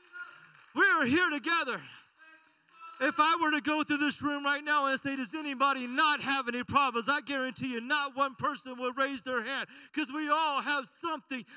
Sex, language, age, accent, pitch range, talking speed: male, English, 40-59, American, 230-290 Hz, 190 wpm